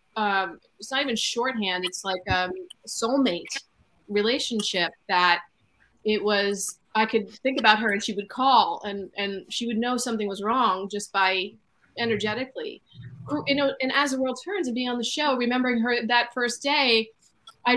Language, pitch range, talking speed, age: English, 210-265 Hz, 175 wpm, 30-49